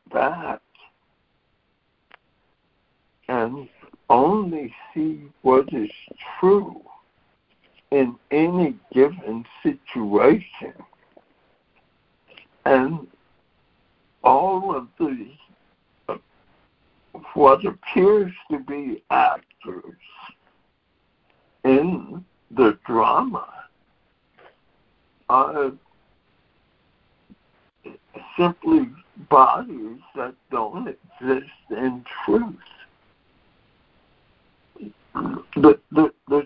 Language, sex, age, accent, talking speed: English, male, 60-79, American, 55 wpm